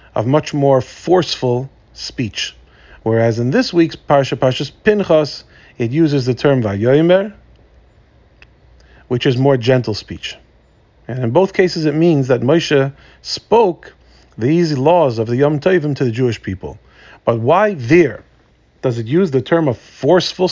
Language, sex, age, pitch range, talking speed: English, male, 40-59, 115-150 Hz, 150 wpm